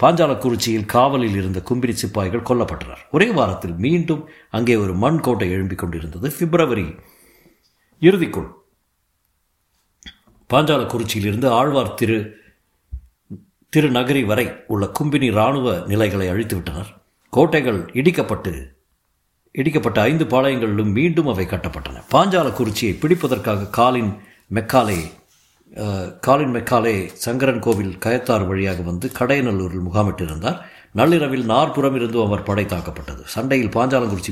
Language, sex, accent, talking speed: Tamil, male, native, 100 wpm